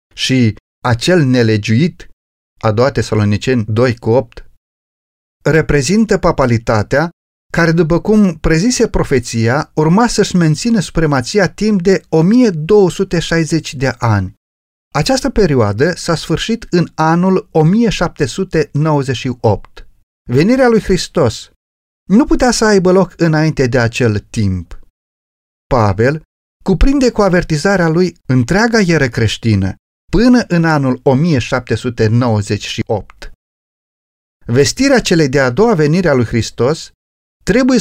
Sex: male